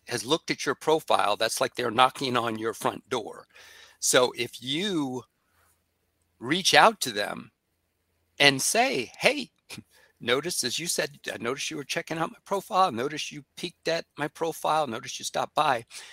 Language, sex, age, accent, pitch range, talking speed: English, male, 50-69, American, 110-175 Hz, 165 wpm